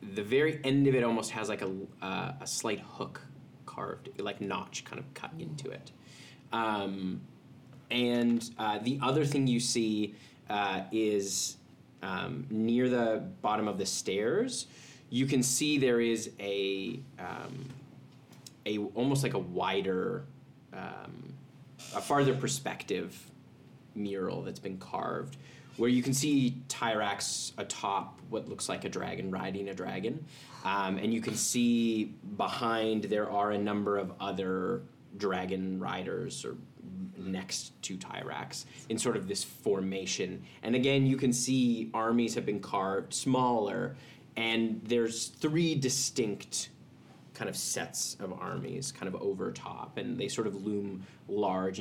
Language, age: English, 20-39